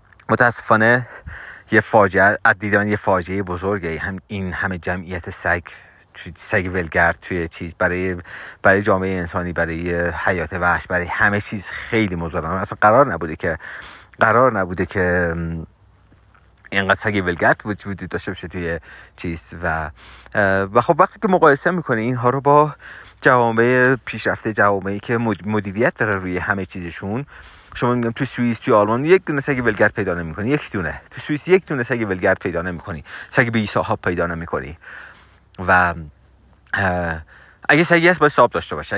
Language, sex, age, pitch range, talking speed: Persian, male, 30-49, 90-120 Hz, 150 wpm